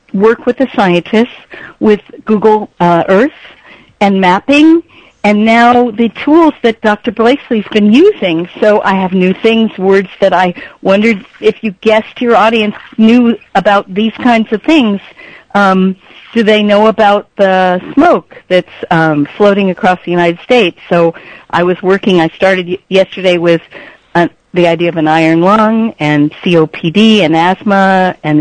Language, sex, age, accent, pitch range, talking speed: English, female, 50-69, American, 185-230 Hz, 150 wpm